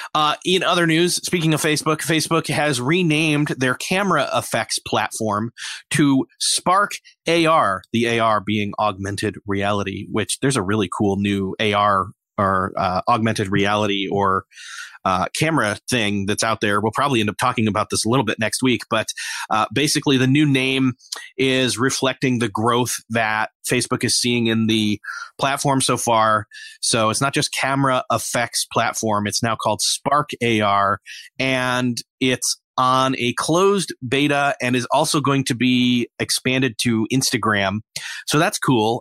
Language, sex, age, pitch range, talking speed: English, male, 30-49, 105-135 Hz, 155 wpm